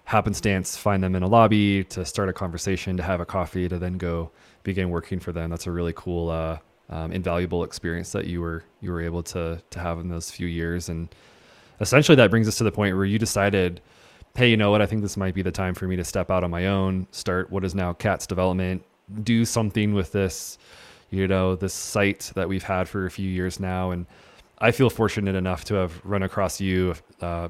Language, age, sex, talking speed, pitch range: English, 20-39, male, 230 wpm, 90-105 Hz